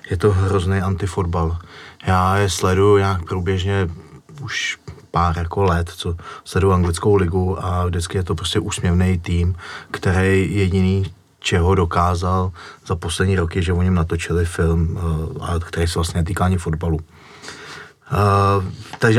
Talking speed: 135 wpm